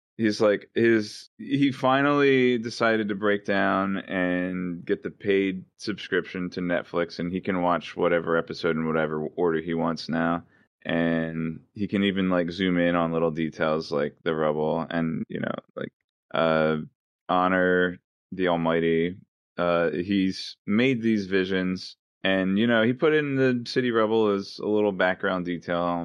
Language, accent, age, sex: English, American, 20-39, male